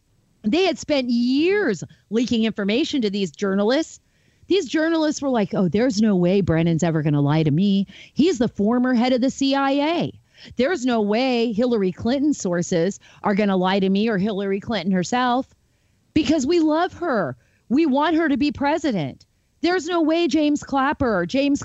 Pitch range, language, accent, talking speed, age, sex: 195-275 Hz, English, American, 175 wpm, 40-59, female